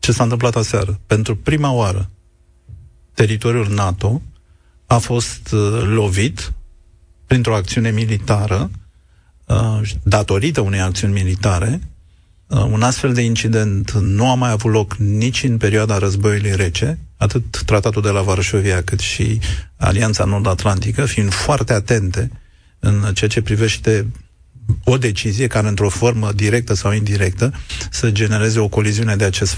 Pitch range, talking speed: 100-115 Hz, 135 wpm